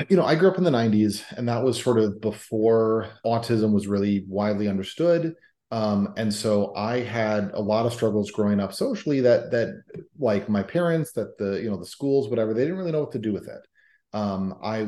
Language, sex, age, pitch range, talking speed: English, male, 30-49, 100-115 Hz, 220 wpm